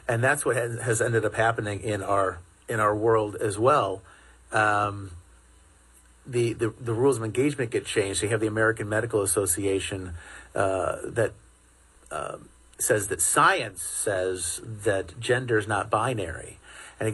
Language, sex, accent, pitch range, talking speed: English, male, American, 105-120 Hz, 155 wpm